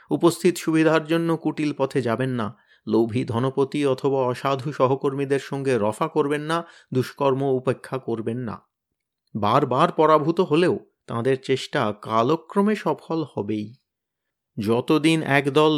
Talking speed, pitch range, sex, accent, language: 120 wpm, 130-190 Hz, male, native, Bengali